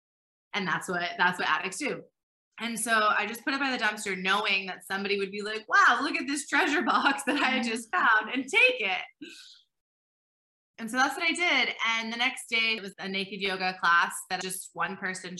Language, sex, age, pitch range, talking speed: English, female, 20-39, 185-230 Hz, 220 wpm